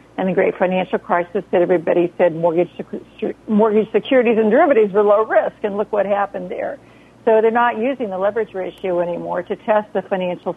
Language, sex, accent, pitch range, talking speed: English, female, American, 175-210 Hz, 200 wpm